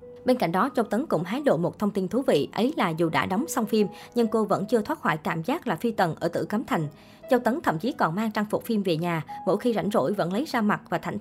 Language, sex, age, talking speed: Vietnamese, male, 20-39, 300 wpm